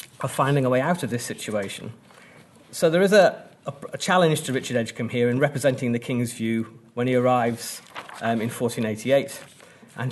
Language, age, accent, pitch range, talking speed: English, 40-59, British, 120-145 Hz, 180 wpm